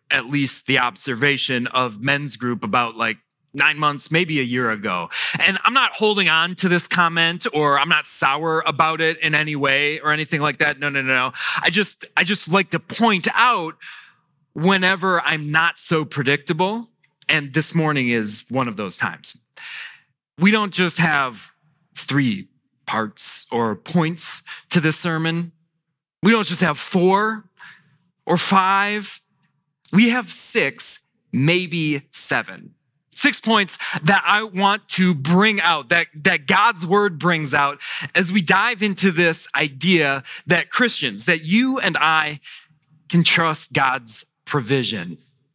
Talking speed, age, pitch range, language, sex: 150 wpm, 30-49, 145-185 Hz, English, male